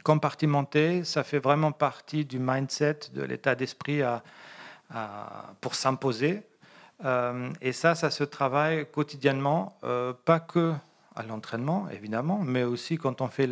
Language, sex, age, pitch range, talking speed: French, male, 40-59, 125-155 Hz, 140 wpm